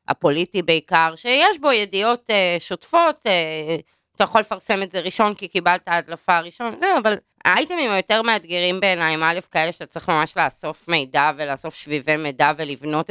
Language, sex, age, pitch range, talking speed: Hebrew, female, 20-39, 165-255 Hz, 160 wpm